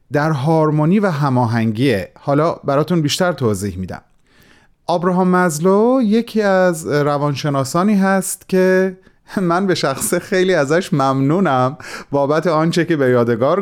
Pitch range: 125-175 Hz